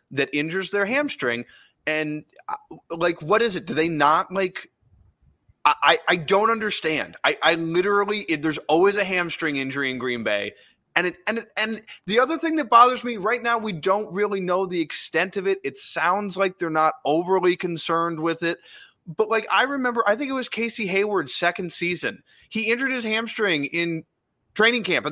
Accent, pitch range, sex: American, 165-220 Hz, male